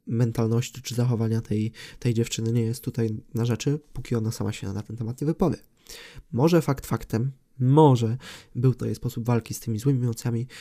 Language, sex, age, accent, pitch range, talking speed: Polish, male, 20-39, native, 115-140 Hz, 185 wpm